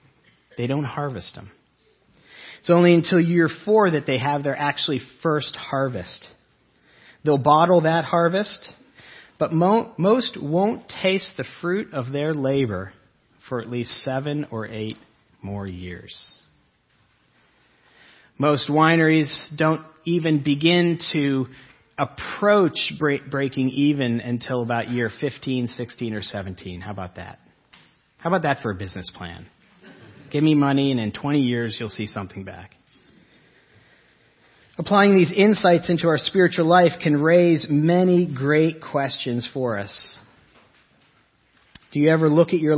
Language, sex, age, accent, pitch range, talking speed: English, male, 40-59, American, 125-160 Hz, 130 wpm